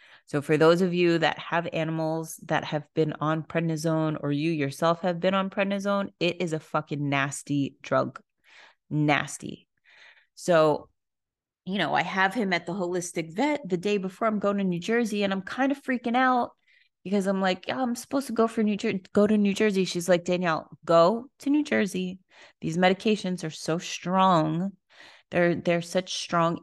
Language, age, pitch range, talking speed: English, 30-49, 150-190 Hz, 185 wpm